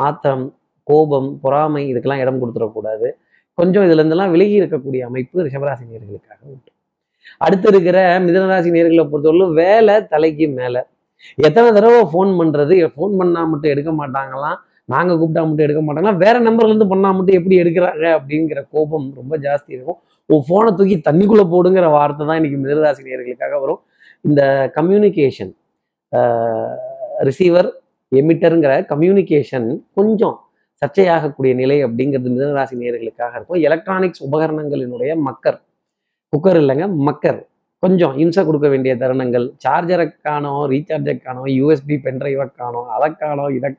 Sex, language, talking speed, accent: male, Tamil, 110 wpm, native